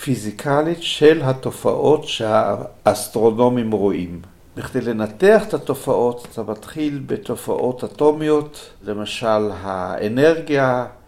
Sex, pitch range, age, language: male, 115-150 Hz, 60-79, Hebrew